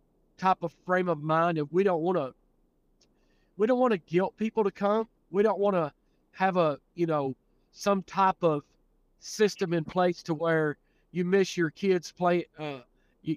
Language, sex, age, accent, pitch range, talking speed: English, male, 40-59, American, 160-195 Hz, 185 wpm